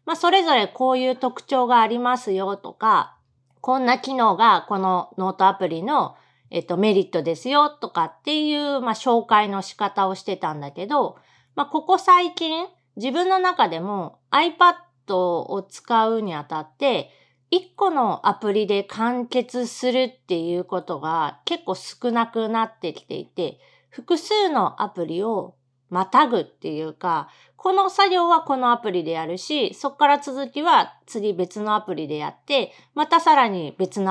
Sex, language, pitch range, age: female, Japanese, 185-290 Hz, 40-59